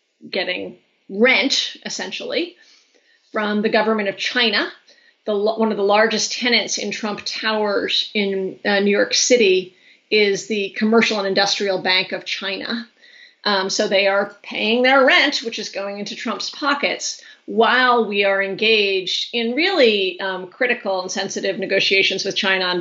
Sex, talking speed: female, 145 wpm